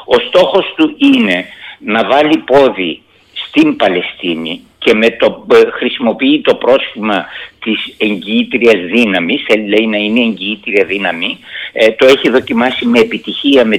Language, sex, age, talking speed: Greek, male, 50-69, 135 wpm